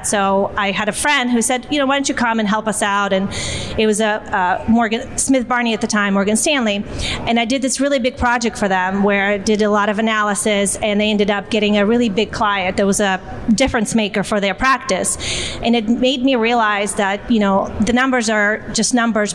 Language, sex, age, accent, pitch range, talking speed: English, female, 30-49, American, 210-240 Hz, 235 wpm